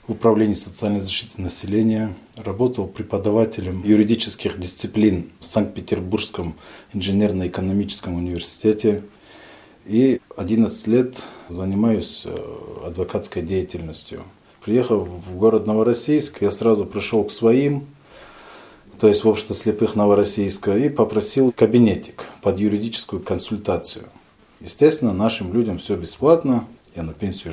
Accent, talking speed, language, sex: native, 105 wpm, Russian, male